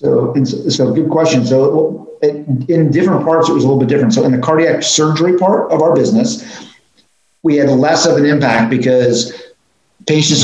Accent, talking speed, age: American, 185 wpm, 40-59